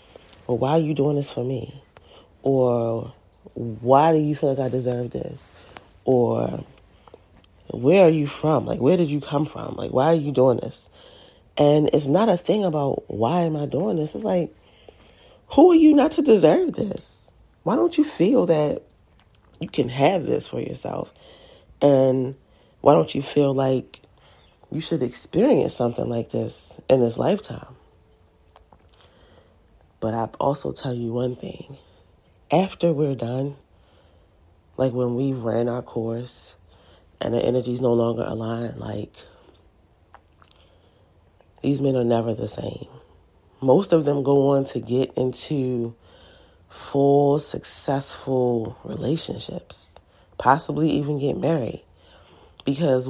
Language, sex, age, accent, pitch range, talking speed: English, female, 30-49, American, 100-145 Hz, 140 wpm